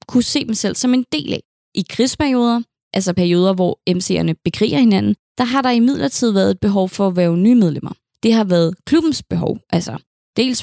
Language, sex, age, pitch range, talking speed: English, female, 20-39, 180-240 Hz, 200 wpm